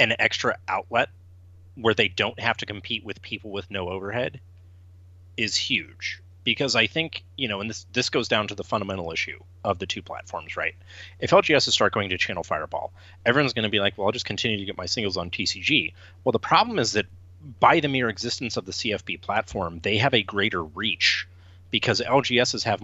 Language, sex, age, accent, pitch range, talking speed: English, male, 30-49, American, 90-120 Hz, 200 wpm